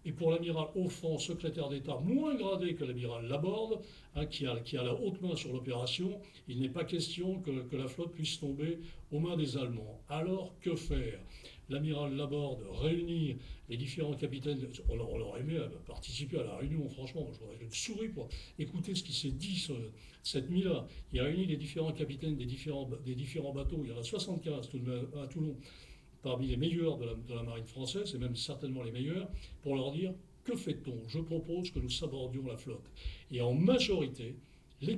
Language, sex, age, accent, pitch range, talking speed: French, male, 60-79, French, 130-165 Hz, 195 wpm